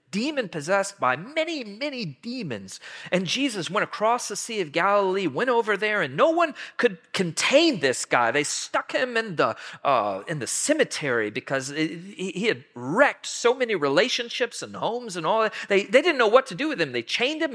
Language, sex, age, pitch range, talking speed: English, male, 40-59, 130-215 Hz, 195 wpm